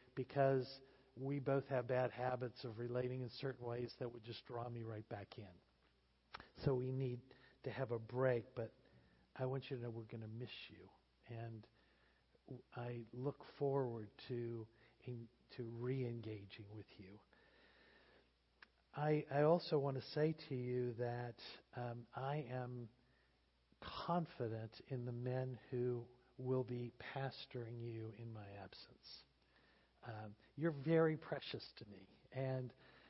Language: English